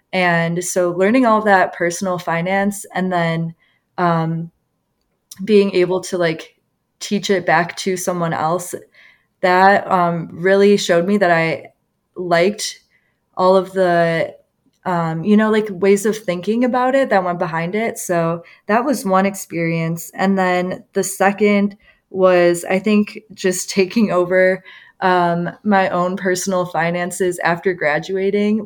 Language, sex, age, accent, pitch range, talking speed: English, female, 20-39, American, 170-195 Hz, 140 wpm